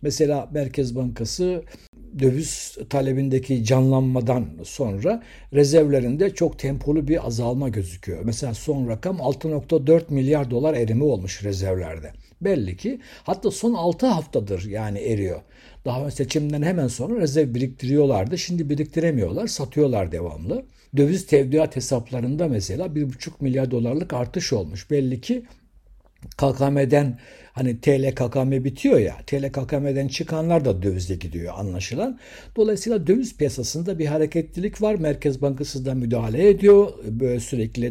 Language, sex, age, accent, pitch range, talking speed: Turkish, male, 60-79, native, 125-165 Hz, 120 wpm